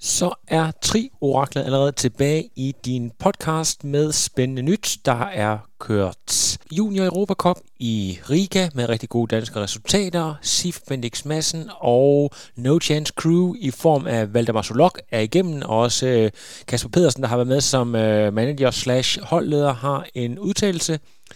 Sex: male